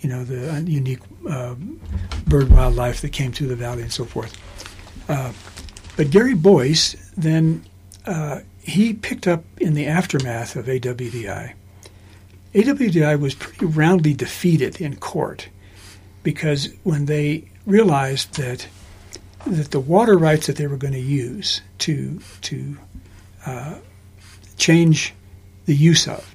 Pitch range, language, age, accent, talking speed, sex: 95-160 Hz, English, 60-79, American, 130 wpm, male